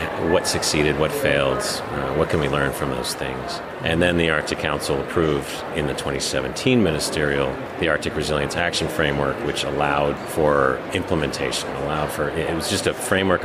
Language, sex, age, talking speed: English, male, 30-49, 170 wpm